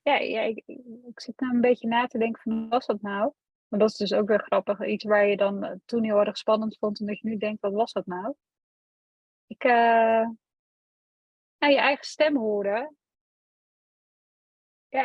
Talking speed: 195 wpm